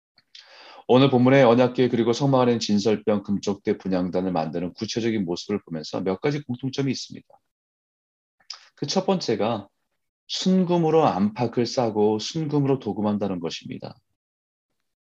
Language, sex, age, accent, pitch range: Korean, male, 40-59, native, 95-130 Hz